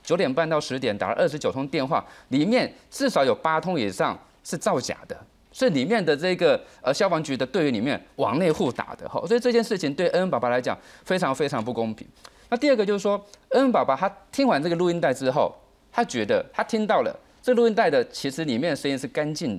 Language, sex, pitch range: Chinese, male, 140-230 Hz